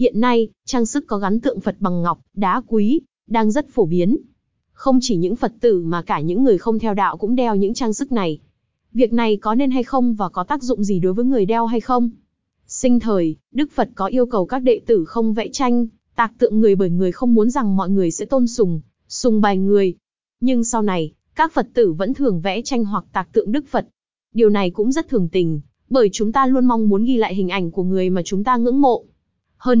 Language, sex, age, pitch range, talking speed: Vietnamese, female, 20-39, 195-250 Hz, 240 wpm